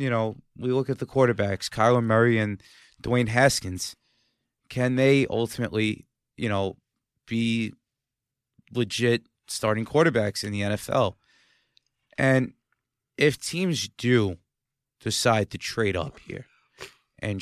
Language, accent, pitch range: English, American, 105-130 Hz